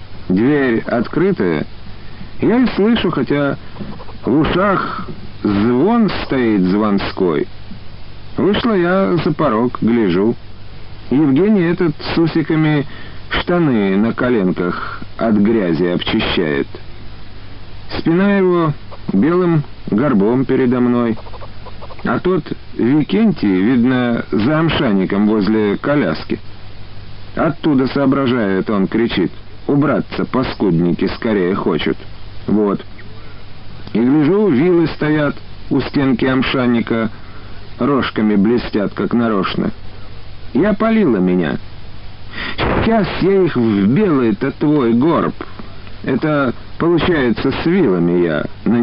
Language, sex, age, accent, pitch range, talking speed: Russian, male, 50-69, native, 100-140 Hz, 90 wpm